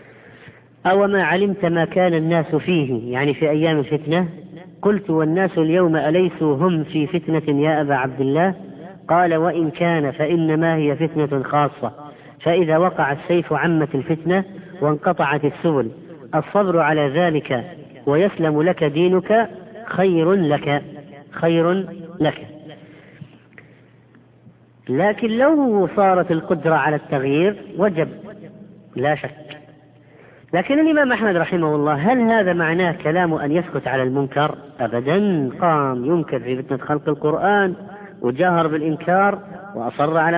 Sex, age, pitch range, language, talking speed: female, 40-59, 145-180 Hz, Arabic, 115 wpm